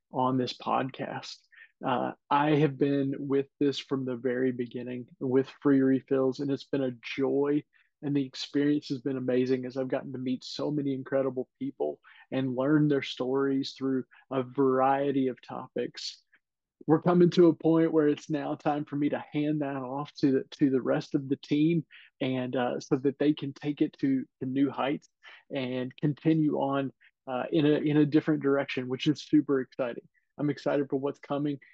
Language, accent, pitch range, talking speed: English, American, 130-145 Hz, 185 wpm